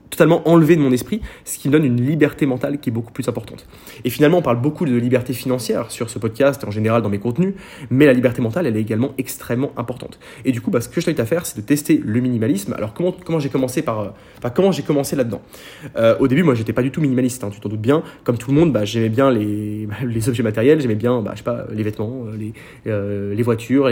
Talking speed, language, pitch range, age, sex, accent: 265 wpm, French, 115-150 Hz, 20-39, male, French